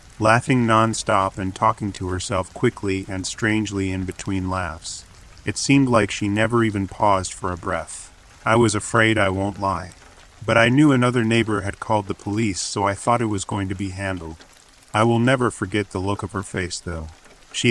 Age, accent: 40-59, American